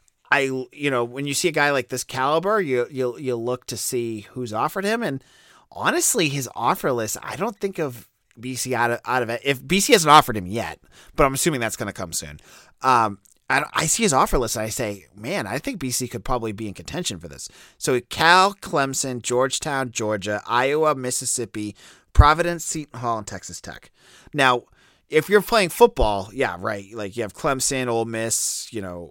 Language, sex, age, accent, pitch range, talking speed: English, male, 30-49, American, 110-150 Hz, 200 wpm